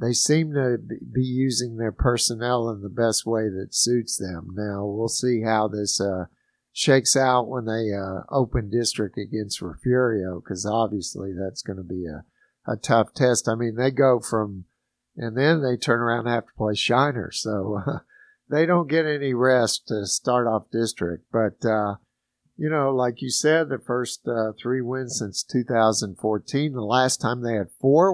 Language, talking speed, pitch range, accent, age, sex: English, 180 wpm, 110-130 Hz, American, 50-69, male